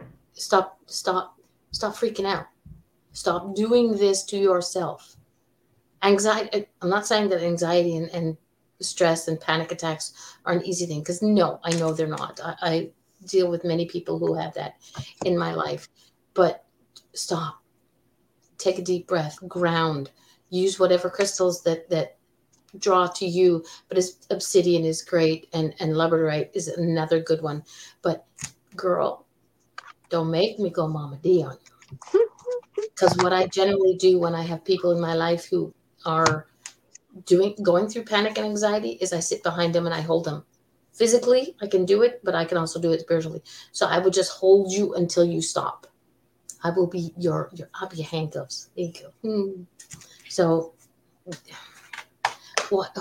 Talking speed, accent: 165 wpm, American